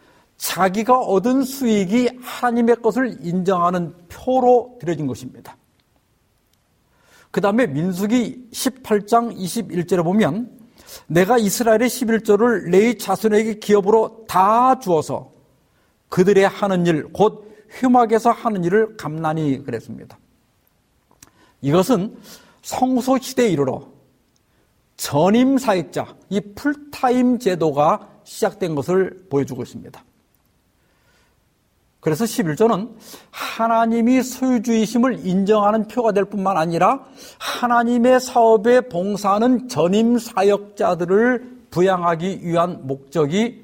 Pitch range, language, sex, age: 180-240 Hz, Korean, male, 50-69